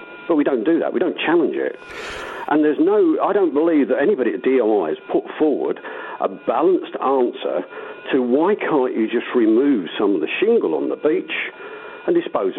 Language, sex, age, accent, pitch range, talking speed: English, male, 50-69, British, 360-455 Hz, 190 wpm